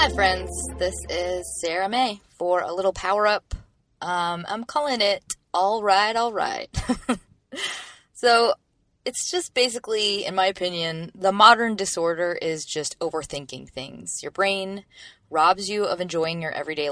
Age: 20-39